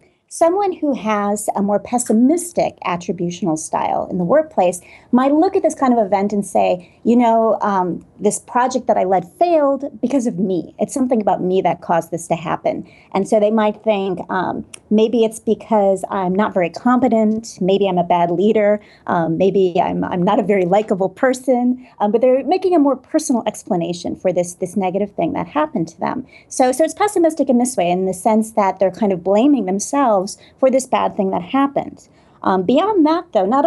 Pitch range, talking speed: 195-260 Hz, 200 wpm